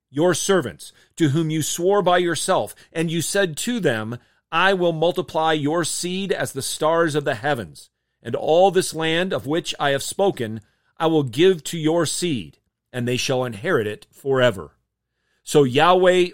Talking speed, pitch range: 175 wpm, 130-170 Hz